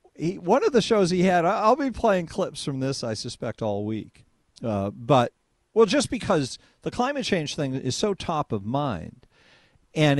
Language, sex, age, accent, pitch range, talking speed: English, male, 50-69, American, 135-205 Hz, 180 wpm